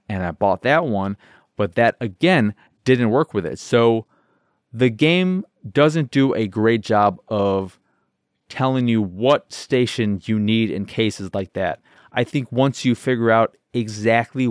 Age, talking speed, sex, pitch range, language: 30-49, 155 wpm, male, 95-120 Hz, English